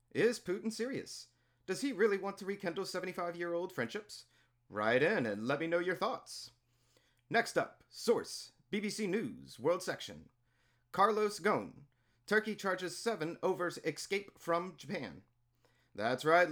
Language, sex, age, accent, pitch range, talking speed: English, male, 40-59, American, 125-195 Hz, 135 wpm